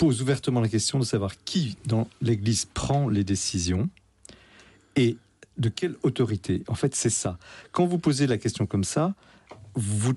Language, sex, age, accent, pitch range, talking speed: French, male, 40-59, French, 100-135 Hz, 165 wpm